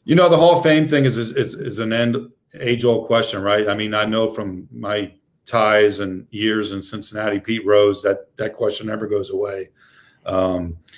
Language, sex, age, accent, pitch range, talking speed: English, male, 40-59, American, 105-125 Hz, 200 wpm